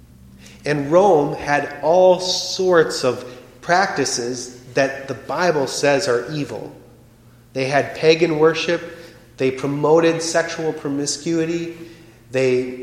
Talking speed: 105 wpm